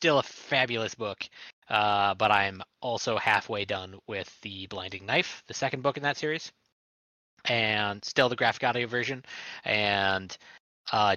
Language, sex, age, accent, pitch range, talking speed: English, male, 20-39, American, 105-140 Hz, 150 wpm